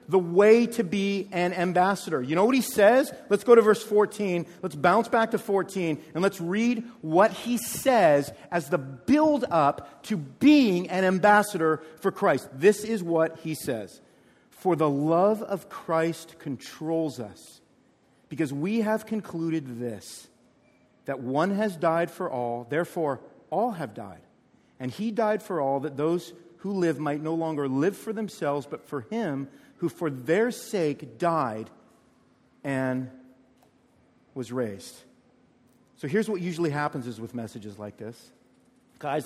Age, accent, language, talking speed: 40-59, American, English, 155 wpm